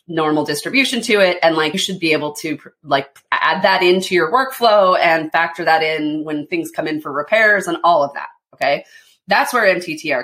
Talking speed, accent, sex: 205 wpm, American, female